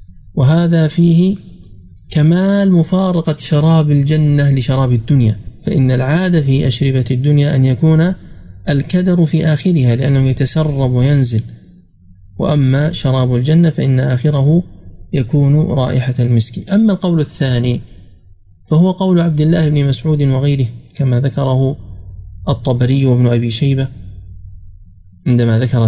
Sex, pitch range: male, 115-155 Hz